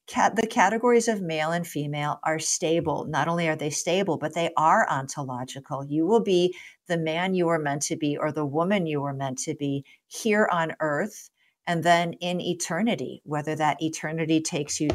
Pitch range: 150-180 Hz